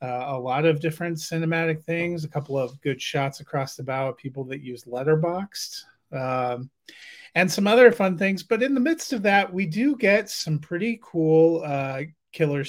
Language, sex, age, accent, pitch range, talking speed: English, male, 30-49, American, 135-185 Hz, 190 wpm